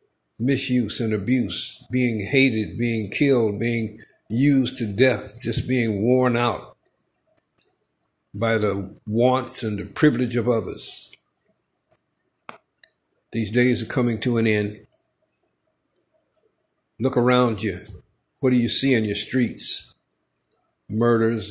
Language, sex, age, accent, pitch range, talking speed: English, male, 60-79, American, 110-130 Hz, 115 wpm